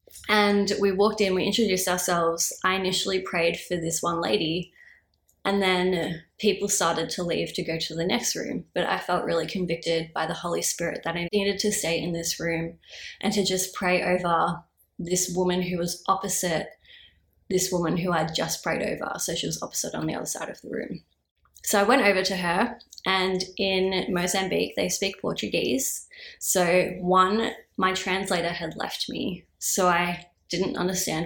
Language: English